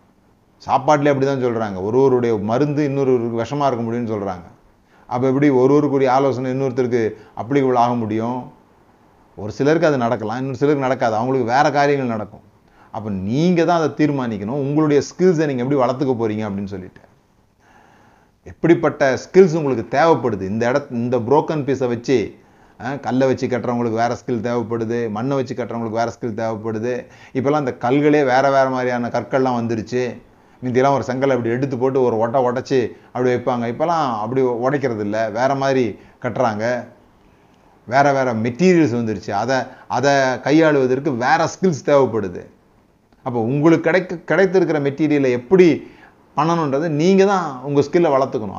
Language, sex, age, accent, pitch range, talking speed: Tamil, male, 30-49, native, 115-145 Hz, 140 wpm